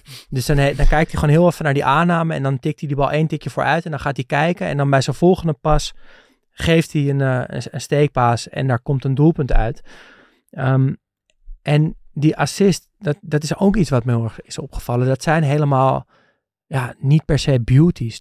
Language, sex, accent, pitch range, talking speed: Dutch, male, Dutch, 130-155 Hz, 220 wpm